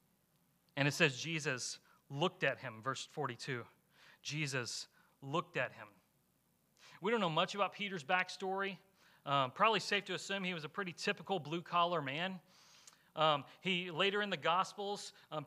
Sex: male